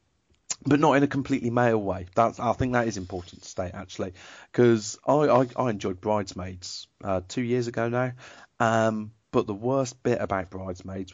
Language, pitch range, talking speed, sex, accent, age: English, 95-110 Hz, 185 wpm, male, British, 30-49